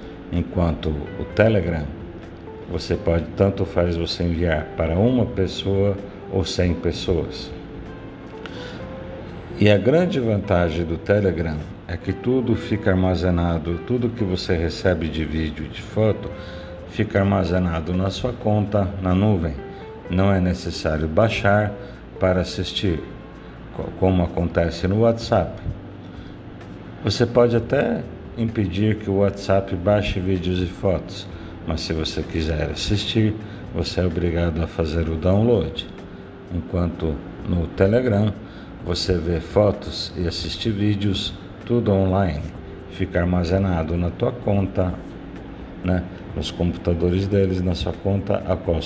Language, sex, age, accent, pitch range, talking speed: Portuguese, male, 60-79, Brazilian, 85-100 Hz, 120 wpm